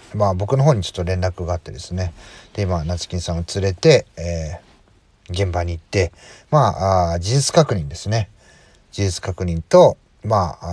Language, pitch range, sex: Japanese, 90-120 Hz, male